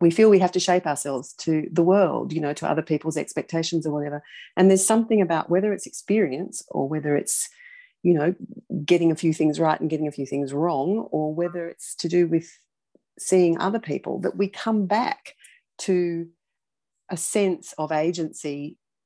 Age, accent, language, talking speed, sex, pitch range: 40-59, Australian, English, 185 wpm, female, 155-215 Hz